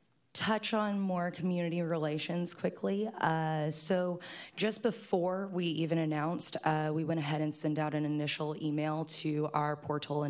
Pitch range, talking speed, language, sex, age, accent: 150-170 Hz, 150 wpm, English, female, 20-39, American